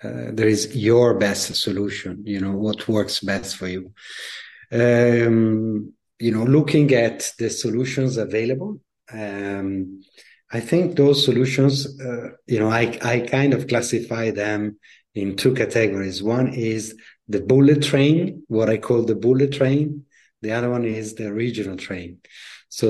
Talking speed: 150 wpm